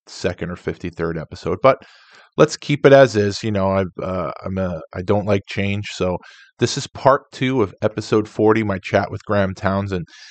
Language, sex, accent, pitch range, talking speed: English, male, American, 90-105 Hz, 215 wpm